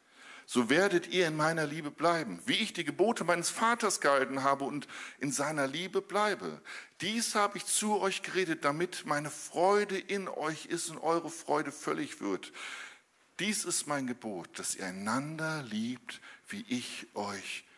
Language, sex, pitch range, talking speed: German, male, 120-175 Hz, 160 wpm